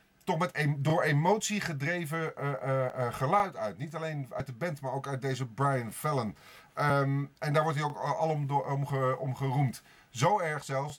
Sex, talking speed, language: male, 200 wpm, Dutch